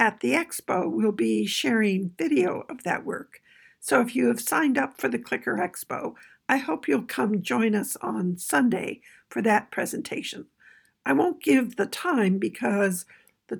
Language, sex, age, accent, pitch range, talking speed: English, female, 60-79, American, 190-275 Hz, 170 wpm